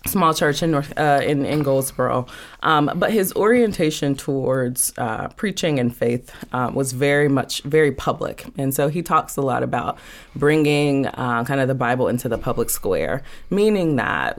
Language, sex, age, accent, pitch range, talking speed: English, female, 20-39, American, 130-155 Hz, 175 wpm